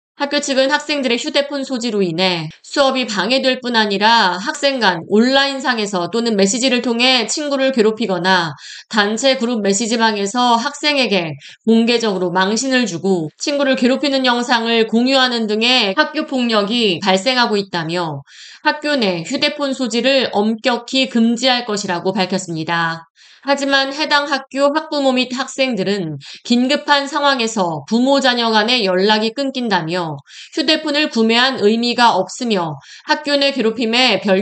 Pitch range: 195-270 Hz